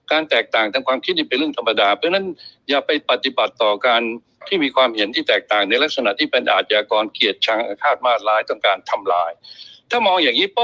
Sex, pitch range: male, 125-210 Hz